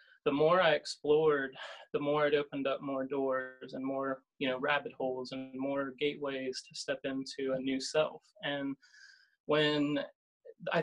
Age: 20-39